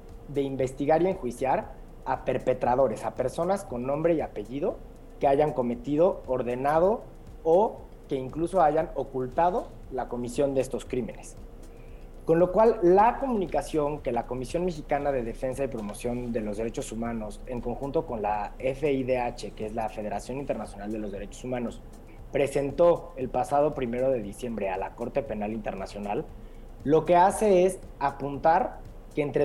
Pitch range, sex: 120-160 Hz, male